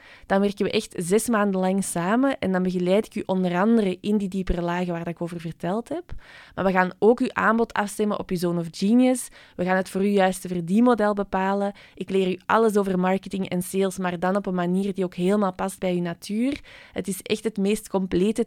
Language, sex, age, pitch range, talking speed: Dutch, female, 20-39, 180-210 Hz, 225 wpm